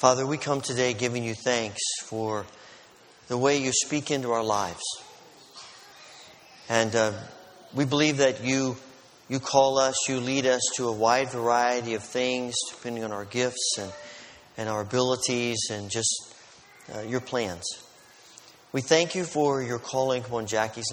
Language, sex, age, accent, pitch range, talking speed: English, male, 40-59, American, 115-140 Hz, 155 wpm